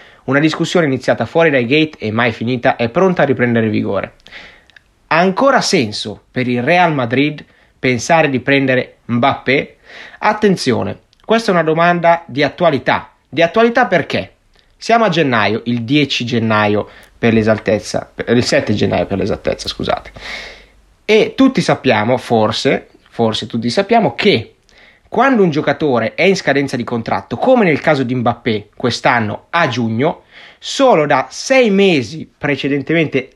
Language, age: Italian, 30-49